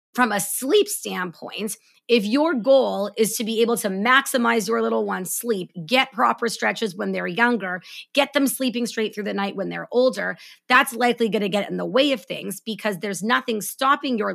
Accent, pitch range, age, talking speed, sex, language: American, 200-250 Hz, 30-49, 200 wpm, female, English